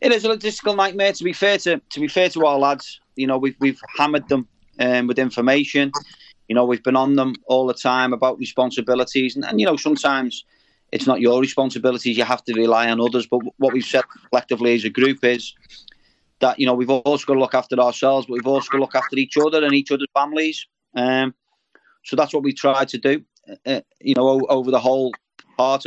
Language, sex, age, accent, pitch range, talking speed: English, male, 30-49, British, 125-140 Hz, 225 wpm